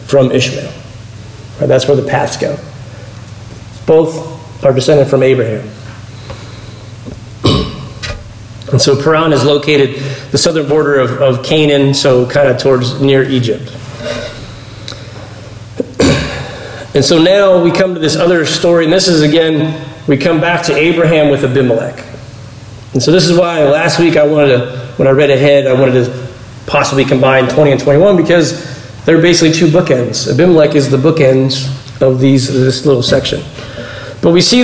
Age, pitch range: 40-59, 120-160 Hz